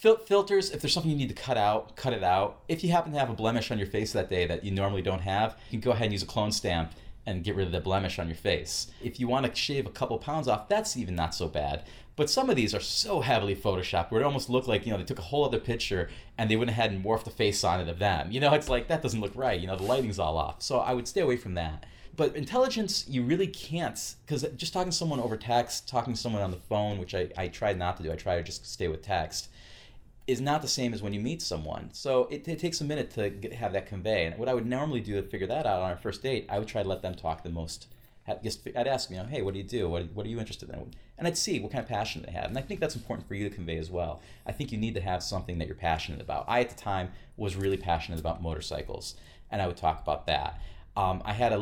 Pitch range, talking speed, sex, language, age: 90-125 Hz, 300 wpm, male, English, 30-49